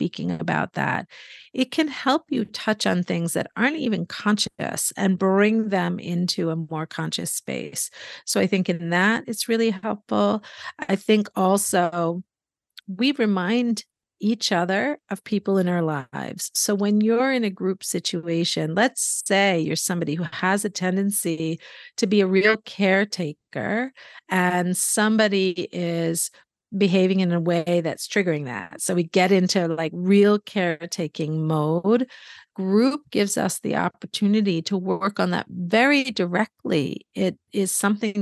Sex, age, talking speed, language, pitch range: female, 50-69, 150 wpm, English, 175-215 Hz